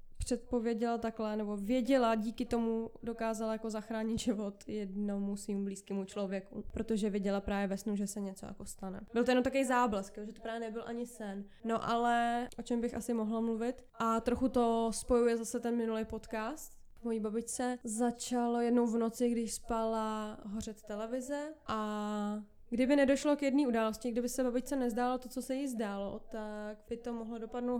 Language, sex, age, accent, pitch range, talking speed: Czech, female, 20-39, native, 210-240 Hz, 175 wpm